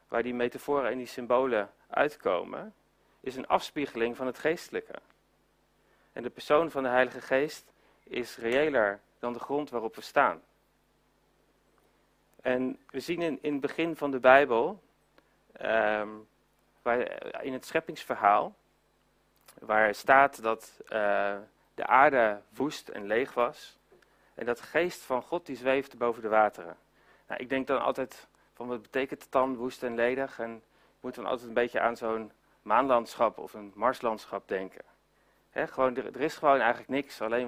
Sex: male